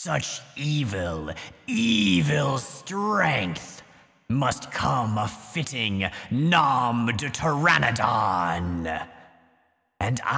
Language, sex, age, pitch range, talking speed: English, male, 30-49, 110-170 Hz, 70 wpm